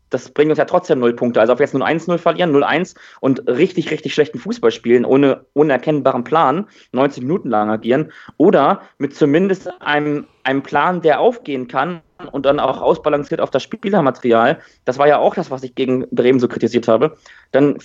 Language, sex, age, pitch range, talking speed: German, male, 30-49, 135-175 Hz, 190 wpm